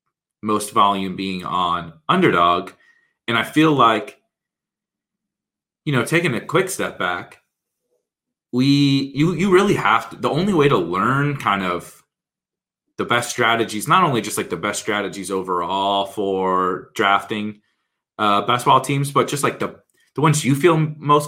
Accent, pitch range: American, 110-140 Hz